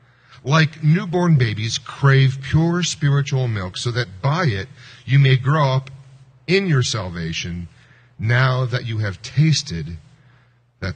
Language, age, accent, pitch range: English, 40-59, American, 120-150 Hz